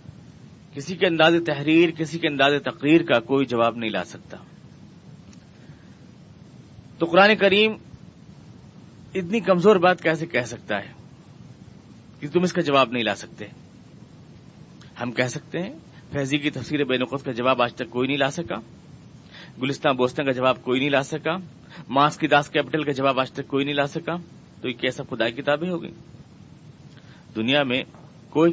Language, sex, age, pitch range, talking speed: Urdu, male, 40-59, 125-165 Hz, 160 wpm